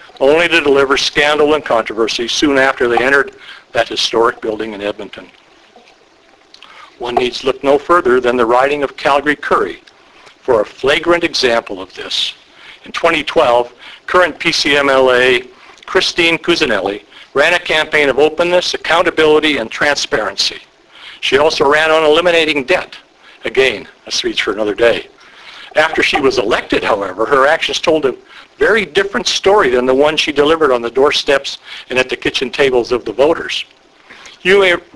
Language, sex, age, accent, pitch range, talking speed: English, male, 60-79, American, 125-170 Hz, 155 wpm